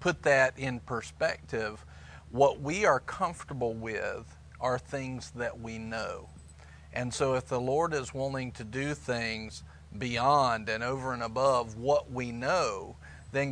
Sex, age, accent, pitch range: male, 40-59, American, 115-140 Hz